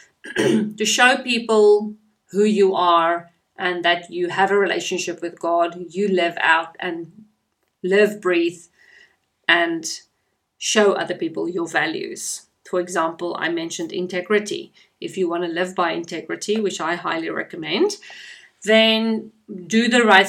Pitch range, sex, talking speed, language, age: 180-220 Hz, female, 135 wpm, English, 30-49